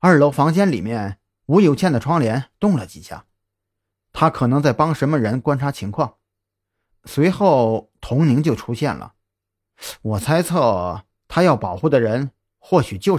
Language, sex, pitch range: Chinese, male, 95-155 Hz